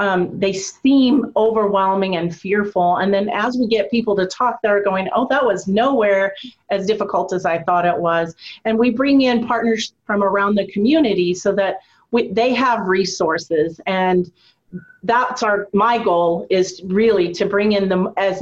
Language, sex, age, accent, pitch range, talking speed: English, female, 40-59, American, 185-230 Hz, 170 wpm